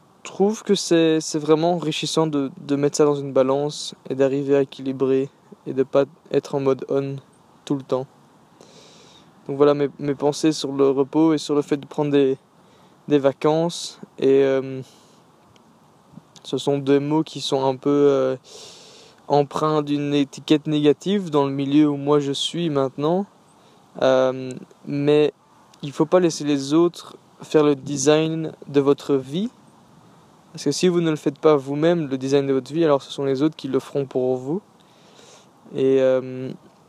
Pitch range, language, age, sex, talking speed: 135-155 Hz, French, 20-39, male, 170 wpm